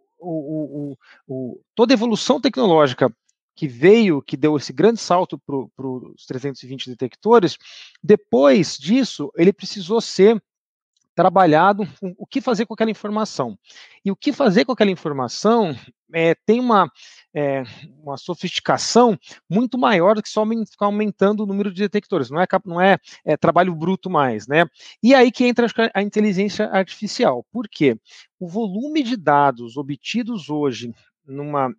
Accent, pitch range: Brazilian, 150-215 Hz